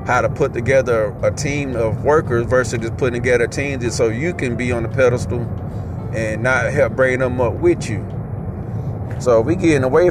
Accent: American